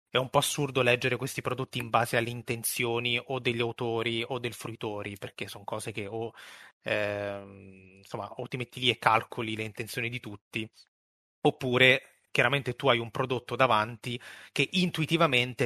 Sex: male